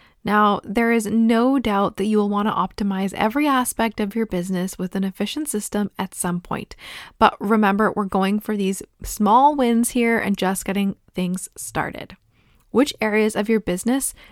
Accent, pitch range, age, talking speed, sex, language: American, 190-230 Hz, 20-39, 175 wpm, female, English